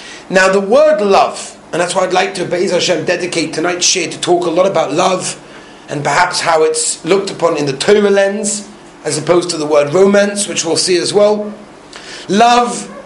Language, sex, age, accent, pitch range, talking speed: English, male, 30-49, British, 175-220 Hz, 200 wpm